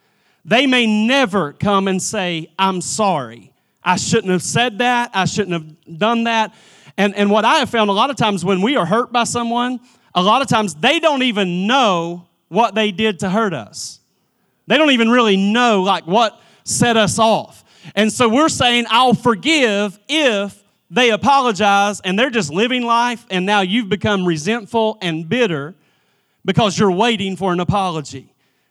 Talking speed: 180 wpm